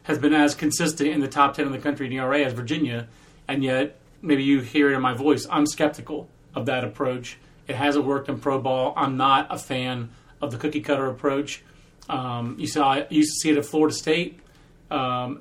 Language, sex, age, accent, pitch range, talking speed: English, male, 30-49, American, 135-155 Hz, 215 wpm